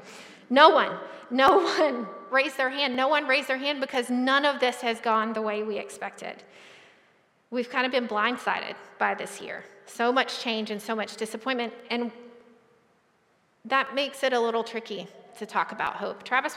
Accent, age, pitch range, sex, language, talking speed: American, 30-49, 215-260 Hz, female, English, 180 wpm